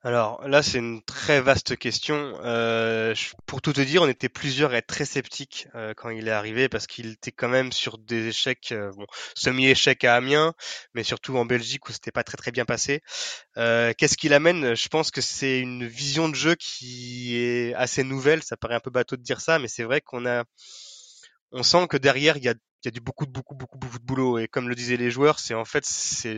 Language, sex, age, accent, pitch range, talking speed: French, male, 20-39, French, 115-140 Hz, 235 wpm